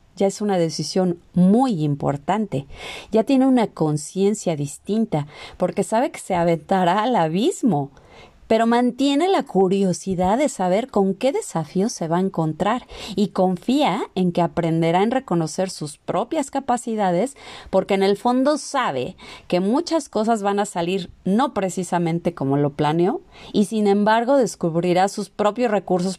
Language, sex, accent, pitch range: Spanish, female, Mexican, 175-225 Hz